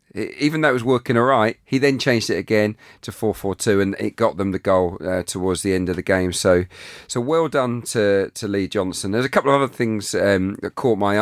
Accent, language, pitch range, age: British, English, 105-125 Hz, 40-59